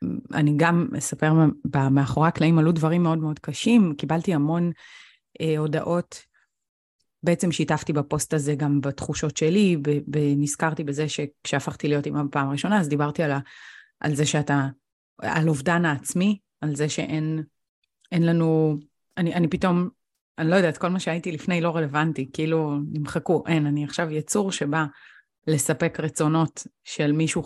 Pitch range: 150-175 Hz